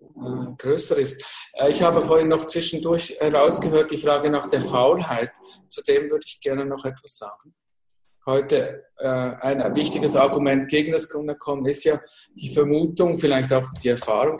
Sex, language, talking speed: male, English, 165 wpm